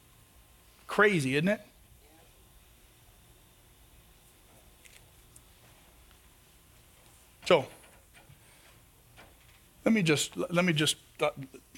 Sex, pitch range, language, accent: male, 130-180 Hz, English, American